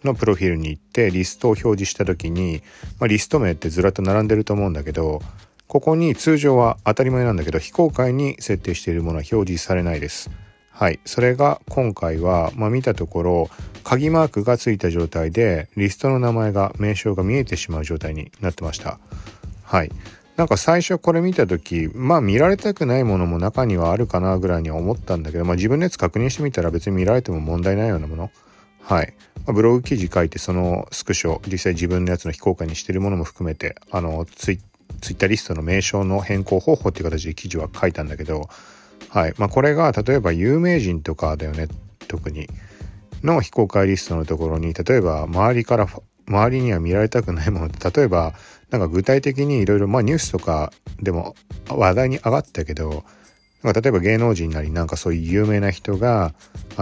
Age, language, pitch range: 40-59, Japanese, 85-115 Hz